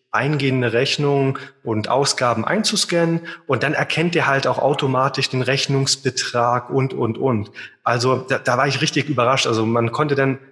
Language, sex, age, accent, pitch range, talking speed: German, male, 30-49, German, 125-155 Hz, 160 wpm